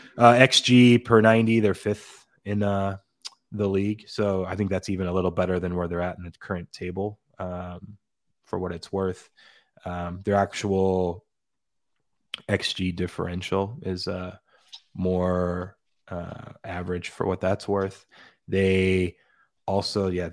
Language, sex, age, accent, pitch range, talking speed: English, male, 20-39, American, 90-100 Hz, 140 wpm